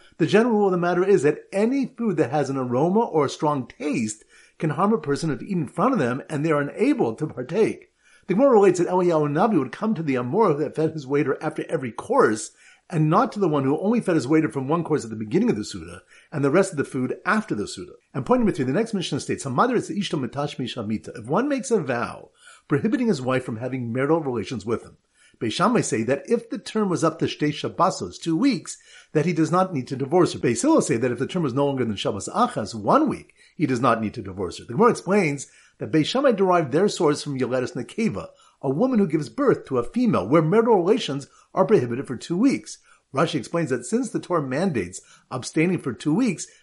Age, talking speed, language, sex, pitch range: 50-69, 235 wpm, English, male, 140-205 Hz